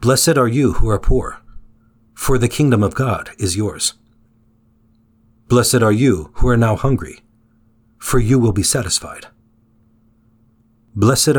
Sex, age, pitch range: male, 40-59, 110-125 Hz